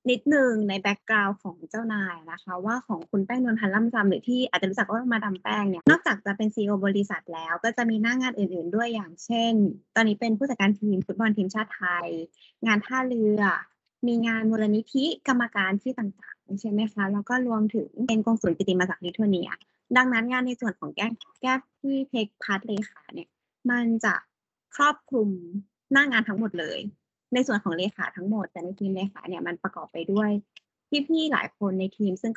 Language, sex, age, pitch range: Thai, female, 20-39, 195-240 Hz